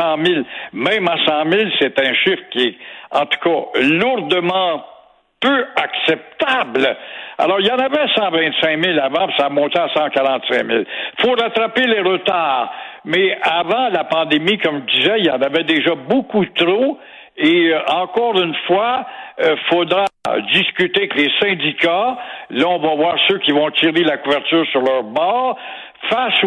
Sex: male